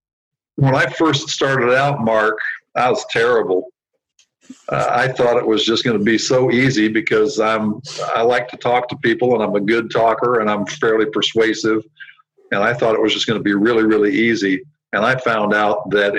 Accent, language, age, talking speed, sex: American, English, 50-69, 195 wpm, male